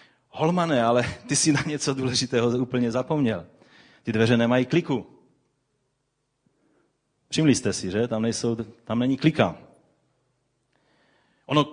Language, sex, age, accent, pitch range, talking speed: Czech, male, 30-49, native, 105-135 Hz, 120 wpm